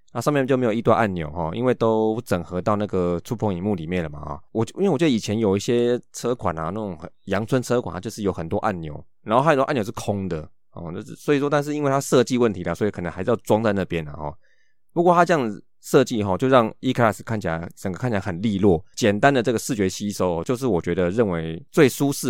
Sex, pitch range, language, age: male, 90-120 Hz, Chinese, 20-39